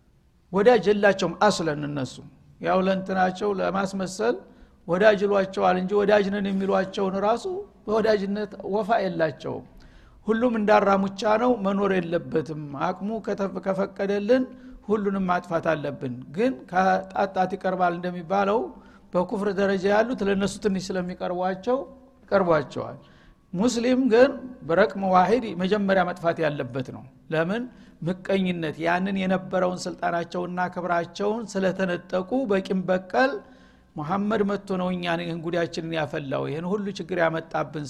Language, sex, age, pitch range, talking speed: Amharic, male, 60-79, 180-210 Hz, 90 wpm